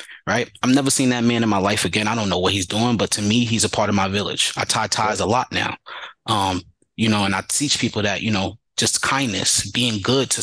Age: 20-39